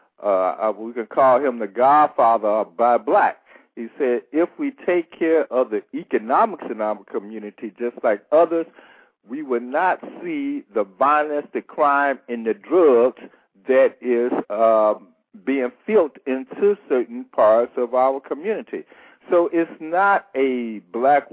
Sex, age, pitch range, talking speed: male, 60-79, 110-155 Hz, 145 wpm